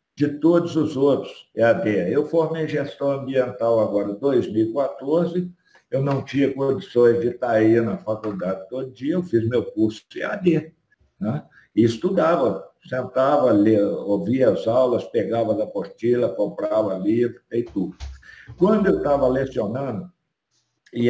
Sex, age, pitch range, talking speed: male, 60-79, 115-155 Hz, 140 wpm